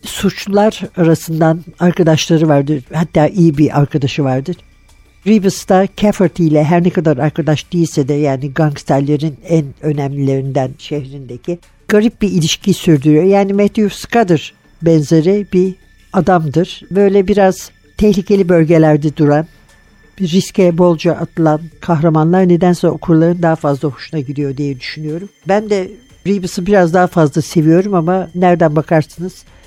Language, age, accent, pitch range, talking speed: Turkish, 60-79, native, 150-185 Hz, 125 wpm